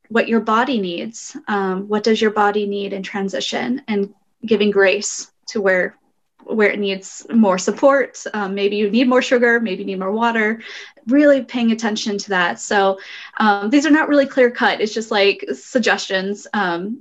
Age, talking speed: 20-39, 180 wpm